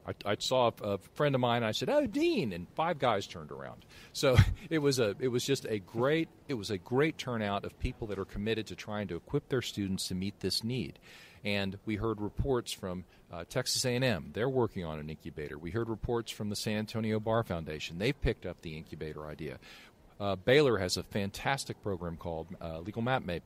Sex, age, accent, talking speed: male, 40-59, American, 225 wpm